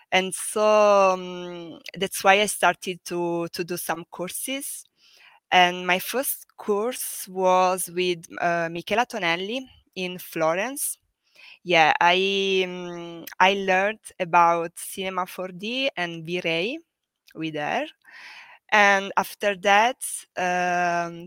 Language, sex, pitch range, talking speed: English, female, 170-205 Hz, 110 wpm